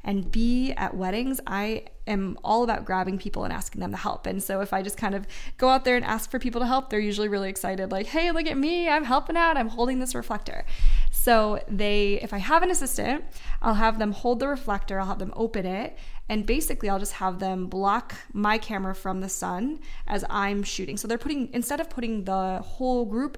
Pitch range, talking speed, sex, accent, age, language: 195-250 Hz, 230 wpm, female, American, 20-39, English